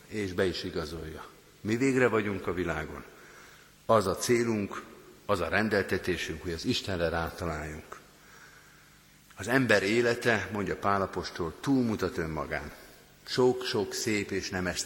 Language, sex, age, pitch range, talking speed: Hungarian, male, 50-69, 85-110 Hz, 120 wpm